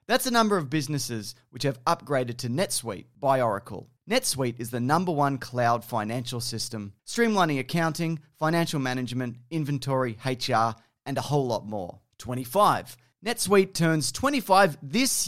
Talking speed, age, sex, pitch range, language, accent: 140 wpm, 30-49, male, 120-170 Hz, English, Australian